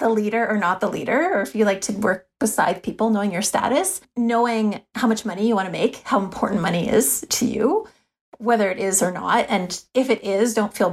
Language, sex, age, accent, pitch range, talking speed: English, female, 30-49, American, 195-235 Hz, 230 wpm